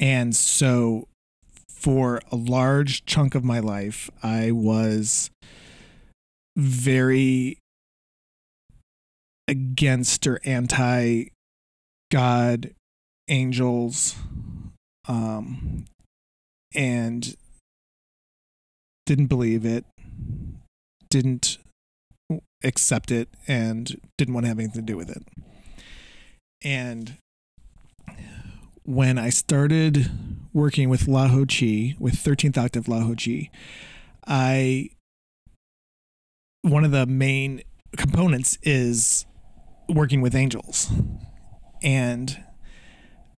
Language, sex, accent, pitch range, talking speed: English, male, American, 110-135 Hz, 85 wpm